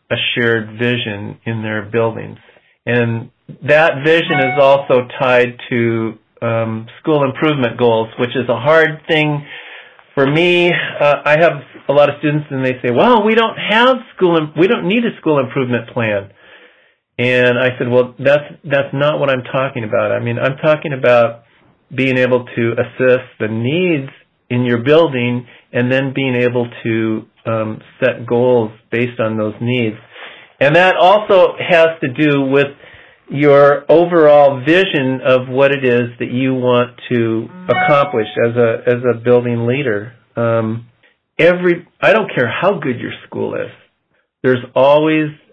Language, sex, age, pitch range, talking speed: English, male, 50-69, 115-140 Hz, 160 wpm